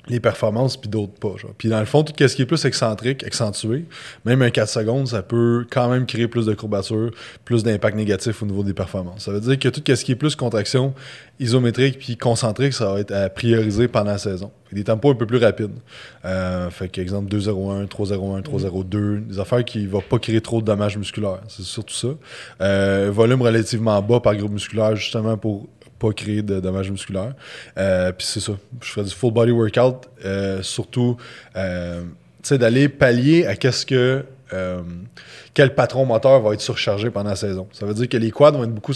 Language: French